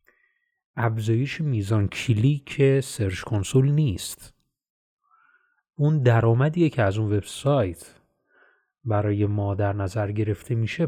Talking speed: 100 wpm